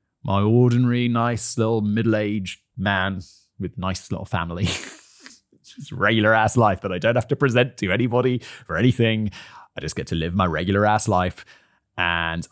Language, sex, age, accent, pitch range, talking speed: English, male, 30-49, British, 100-140 Hz, 170 wpm